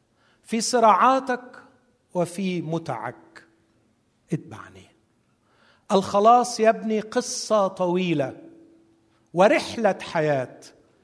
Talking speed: 60 wpm